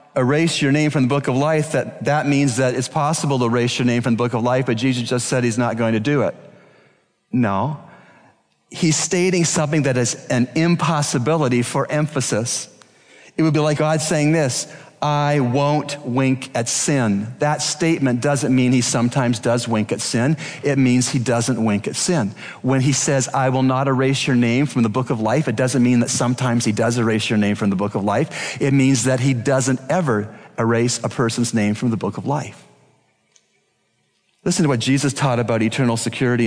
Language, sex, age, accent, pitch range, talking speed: English, male, 40-59, American, 120-145 Hz, 205 wpm